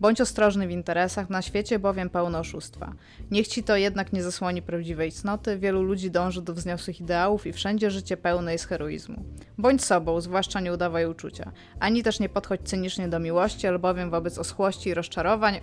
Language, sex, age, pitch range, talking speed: Polish, female, 20-39, 170-205 Hz, 180 wpm